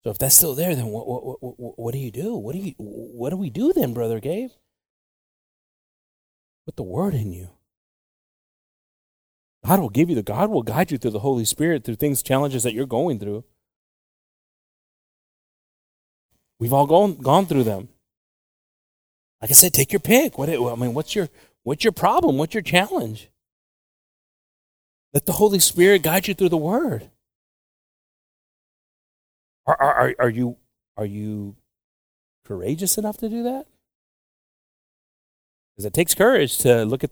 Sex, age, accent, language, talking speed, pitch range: male, 30-49, American, English, 155 wpm, 110-165 Hz